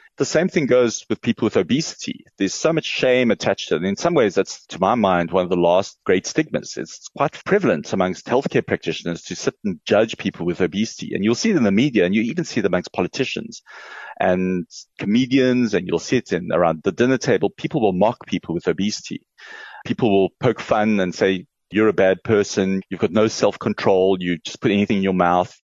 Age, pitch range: 30-49, 95-125 Hz